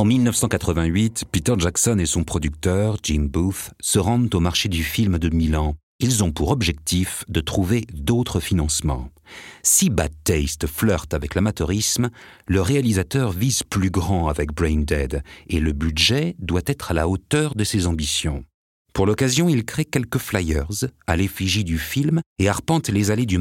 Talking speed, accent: 165 wpm, French